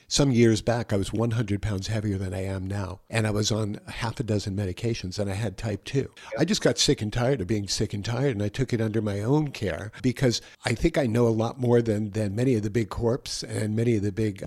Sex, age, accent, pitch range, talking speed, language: male, 60-79, American, 105-125 Hz, 265 wpm, English